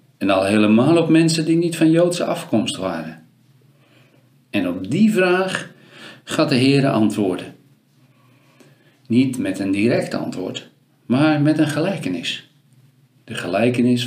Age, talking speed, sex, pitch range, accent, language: 50-69, 130 wpm, male, 115-140 Hz, Dutch, Dutch